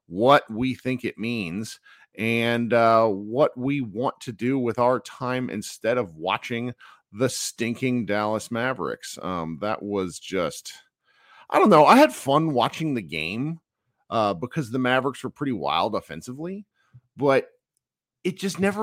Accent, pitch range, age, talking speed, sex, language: American, 100-140 Hz, 40-59, 150 wpm, male, English